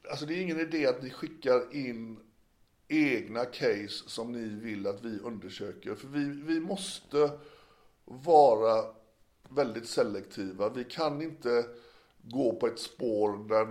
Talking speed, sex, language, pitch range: 140 wpm, male, Swedish, 105-135 Hz